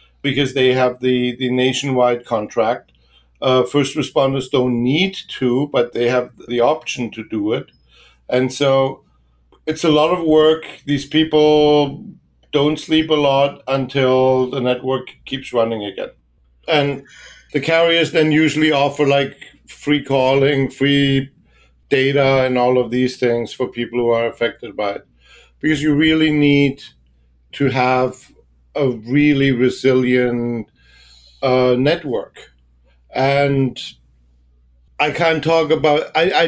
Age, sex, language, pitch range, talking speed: 50-69, male, English, 120-145 Hz, 135 wpm